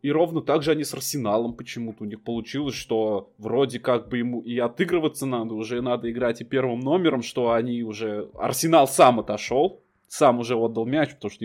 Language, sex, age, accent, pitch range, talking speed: Russian, male, 20-39, native, 115-145 Hz, 195 wpm